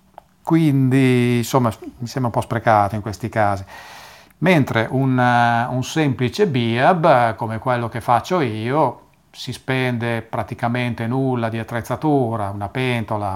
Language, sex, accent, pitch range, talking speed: Italian, male, native, 105-120 Hz, 120 wpm